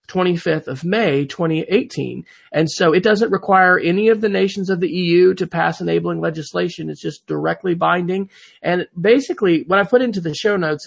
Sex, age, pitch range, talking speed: male, 40-59, 155-195 Hz, 180 wpm